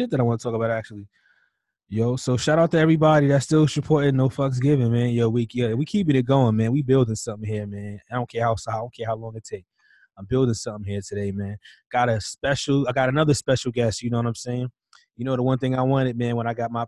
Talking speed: 270 wpm